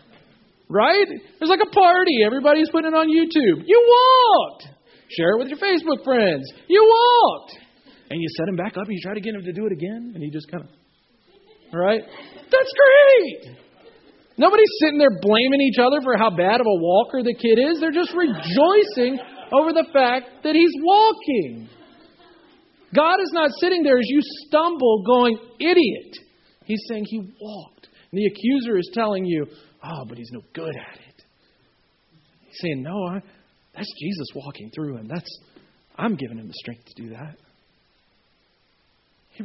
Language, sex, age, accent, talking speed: English, male, 40-59, American, 170 wpm